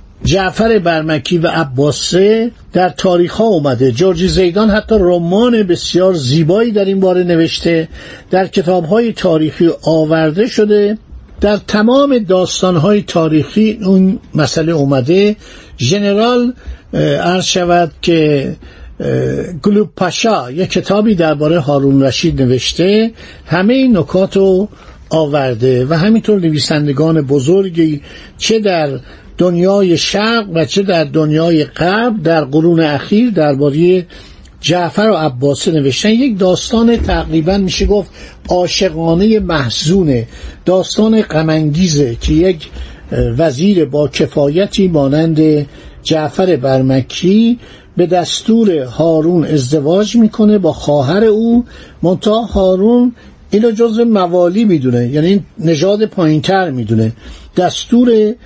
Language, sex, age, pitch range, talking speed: Persian, male, 60-79, 155-205 Hz, 105 wpm